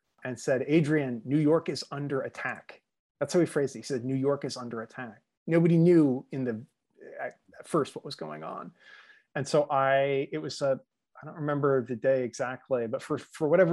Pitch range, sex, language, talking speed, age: 115-150 Hz, male, English, 200 wpm, 30-49